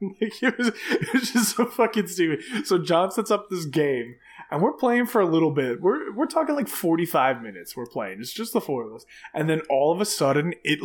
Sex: male